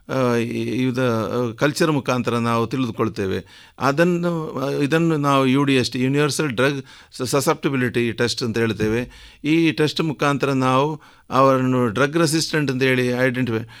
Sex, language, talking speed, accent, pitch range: male, Kannada, 115 wpm, native, 115-140 Hz